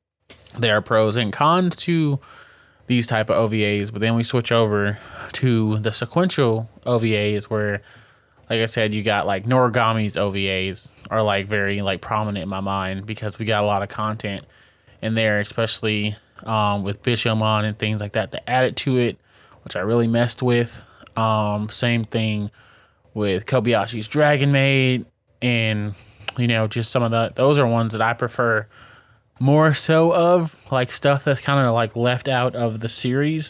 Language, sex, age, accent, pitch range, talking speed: English, male, 20-39, American, 105-125 Hz, 170 wpm